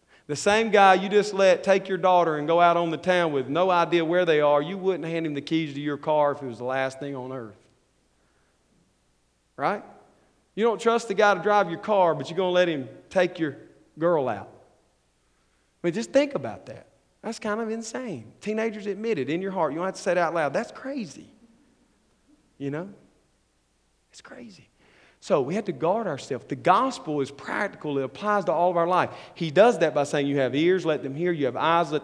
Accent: American